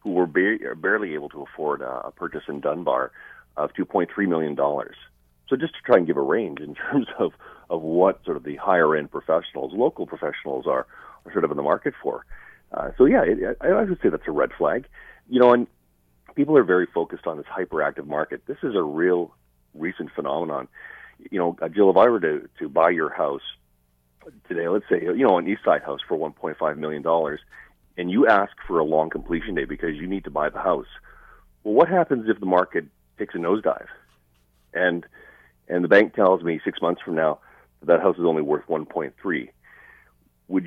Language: English